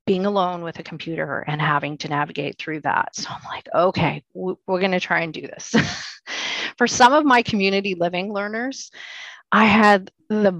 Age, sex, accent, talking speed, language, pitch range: 30-49, female, American, 175 wpm, English, 170-200 Hz